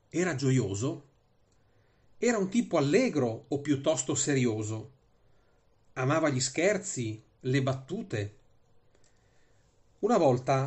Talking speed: 90 wpm